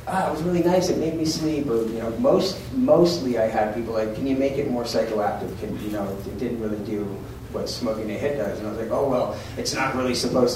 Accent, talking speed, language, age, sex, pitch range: American, 260 wpm, English, 30-49, male, 110-125 Hz